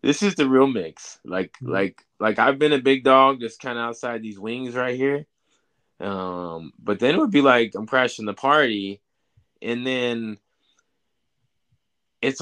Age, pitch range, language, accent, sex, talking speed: 20-39, 100-135 Hz, English, American, male, 170 wpm